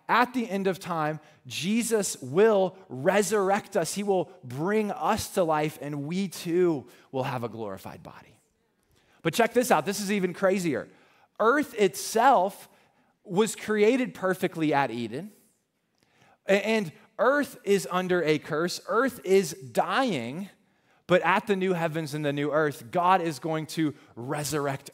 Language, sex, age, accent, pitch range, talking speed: English, male, 20-39, American, 135-190 Hz, 145 wpm